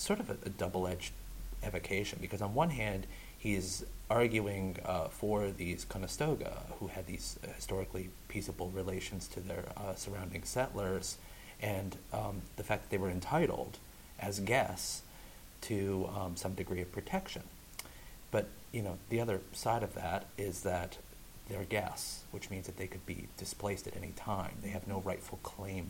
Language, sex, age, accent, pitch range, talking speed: English, male, 30-49, American, 95-105 Hz, 160 wpm